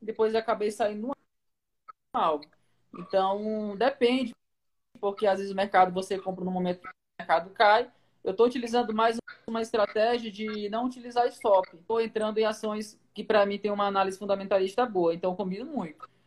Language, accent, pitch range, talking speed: Portuguese, Brazilian, 190-225 Hz, 170 wpm